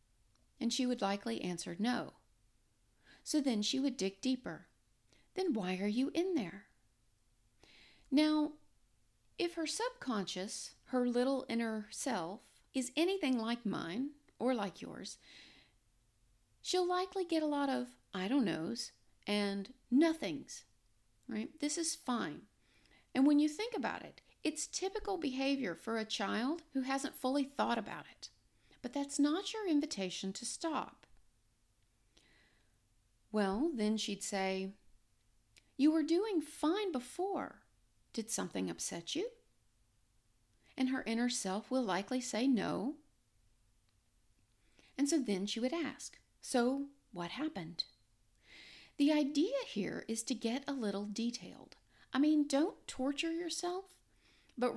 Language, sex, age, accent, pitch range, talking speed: English, female, 40-59, American, 195-300 Hz, 130 wpm